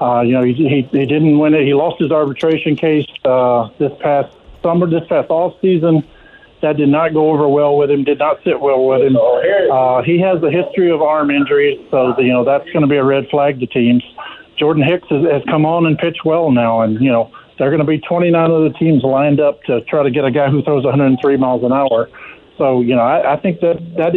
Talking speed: 250 wpm